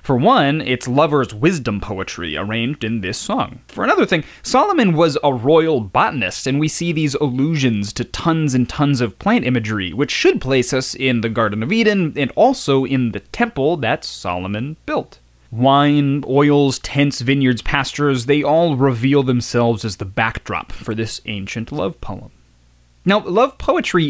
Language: English